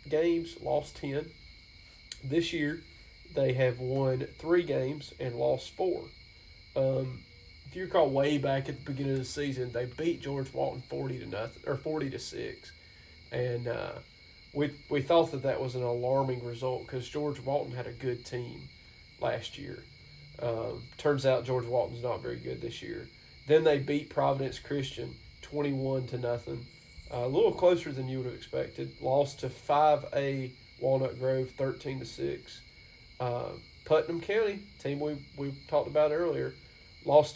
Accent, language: American, English